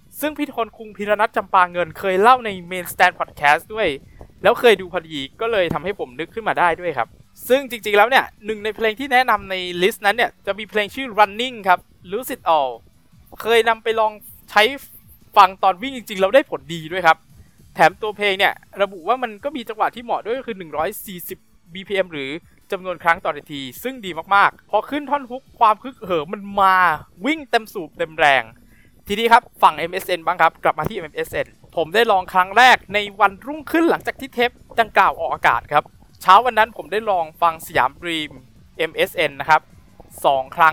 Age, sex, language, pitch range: 20-39, male, Thai, 175-230 Hz